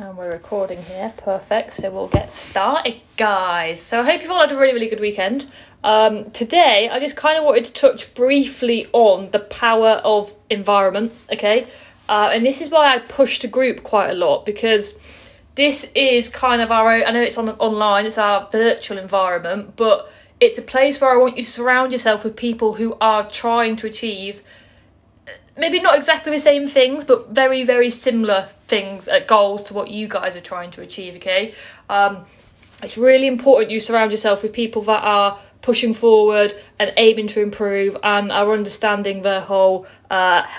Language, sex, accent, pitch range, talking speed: English, female, British, 205-260 Hz, 190 wpm